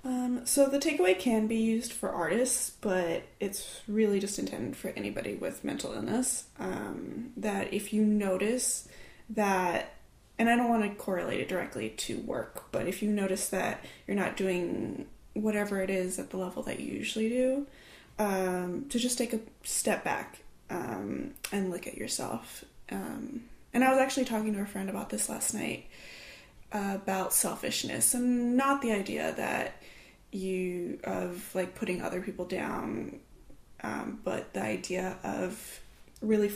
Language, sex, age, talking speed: English, female, 10-29, 160 wpm